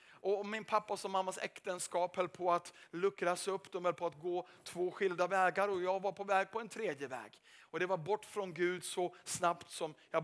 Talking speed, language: 225 wpm, Swedish